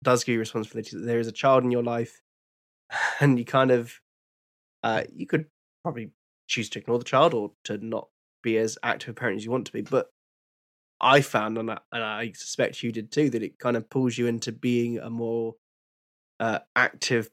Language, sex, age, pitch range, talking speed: English, male, 20-39, 115-135 Hz, 210 wpm